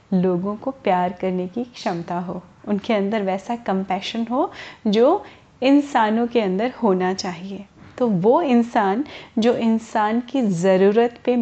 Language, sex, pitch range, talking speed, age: Hindi, female, 200-270 Hz, 135 wpm, 30-49